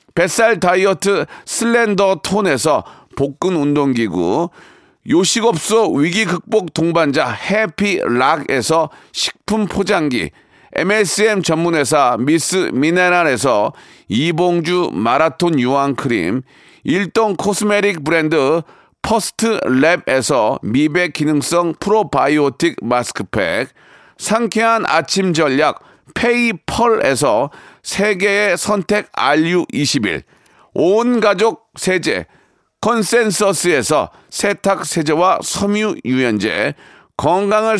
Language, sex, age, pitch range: Korean, male, 40-59, 160-215 Hz